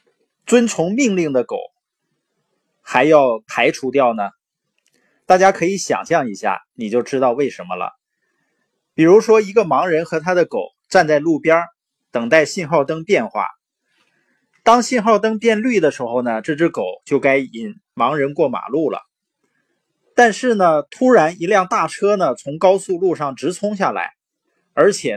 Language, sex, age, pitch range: Chinese, male, 20-39, 155-230 Hz